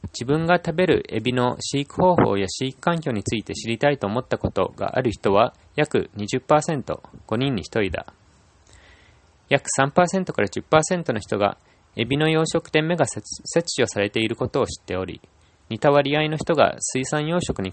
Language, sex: Japanese, male